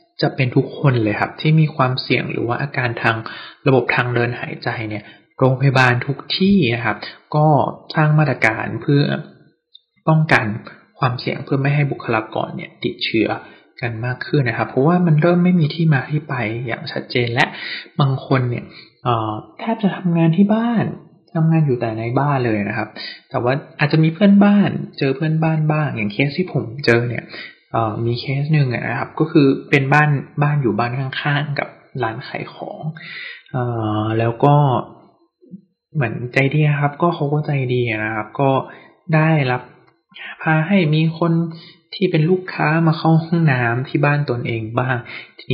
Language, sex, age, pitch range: Thai, male, 20-39, 120-160 Hz